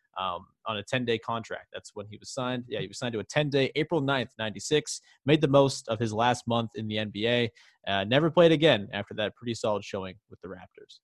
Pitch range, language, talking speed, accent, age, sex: 110-150 Hz, English, 230 wpm, American, 20-39, male